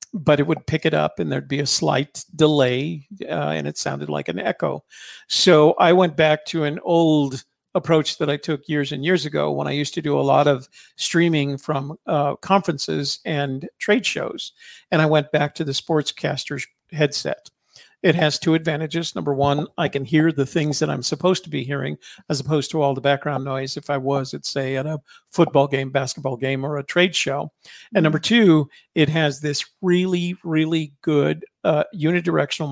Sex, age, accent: male, 50-69, American